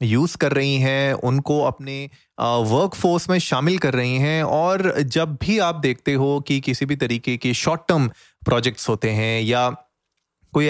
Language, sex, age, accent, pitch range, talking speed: Hindi, male, 30-49, native, 115-145 Hz, 170 wpm